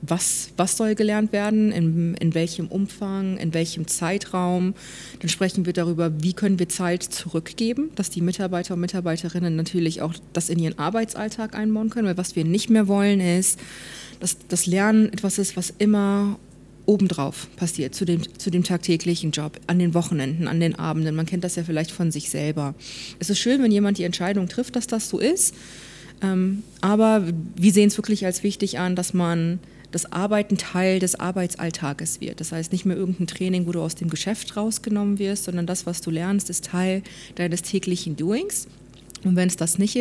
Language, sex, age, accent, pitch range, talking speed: German, female, 20-39, German, 165-195 Hz, 190 wpm